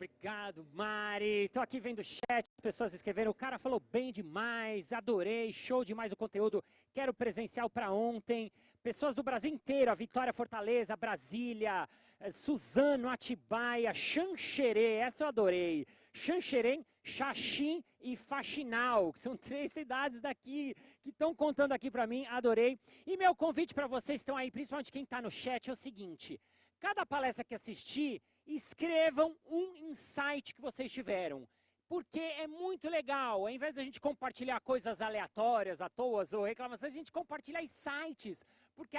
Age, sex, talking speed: 40-59, male, 155 wpm